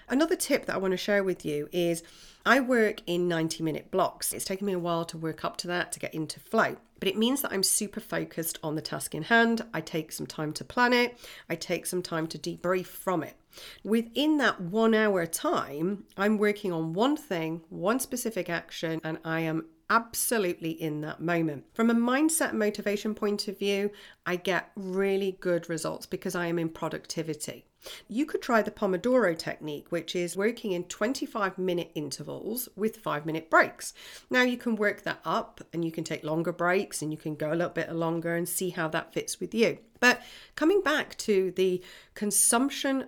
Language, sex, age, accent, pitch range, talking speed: English, female, 40-59, British, 165-220 Hz, 200 wpm